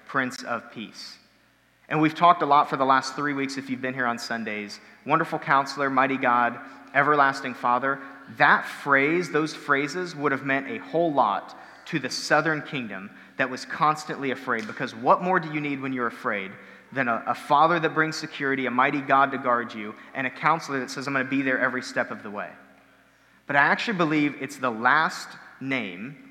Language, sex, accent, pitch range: English, male, American, 130-155 Hz